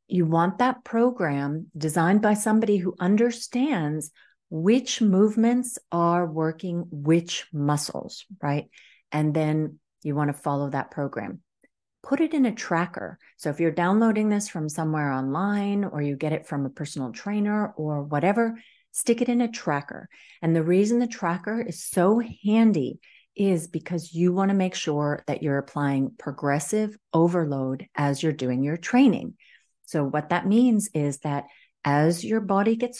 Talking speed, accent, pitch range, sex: 160 wpm, American, 145-205 Hz, female